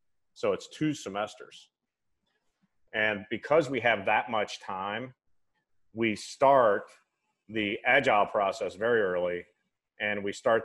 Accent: American